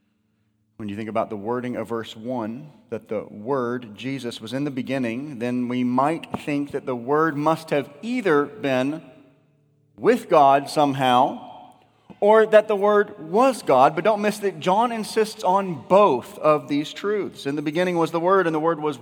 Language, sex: English, male